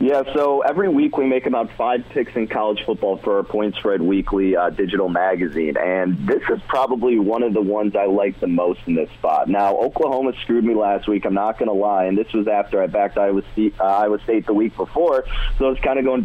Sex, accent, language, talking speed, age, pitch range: male, American, English, 235 wpm, 30-49, 105-120 Hz